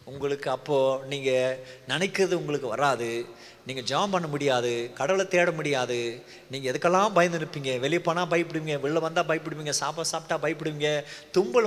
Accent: native